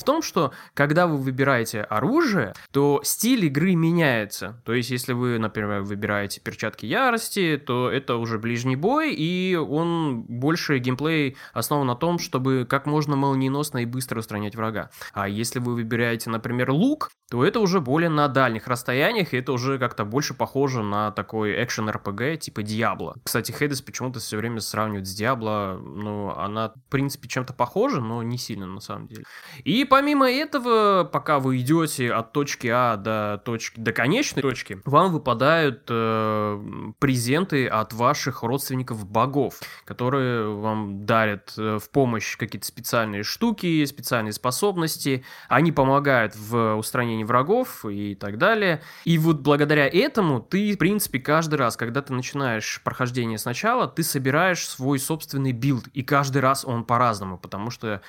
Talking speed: 155 wpm